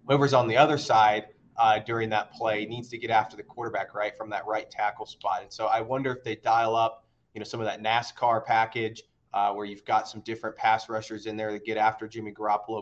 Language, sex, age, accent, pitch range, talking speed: English, male, 30-49, American, 110-125 Hz, 240 wpm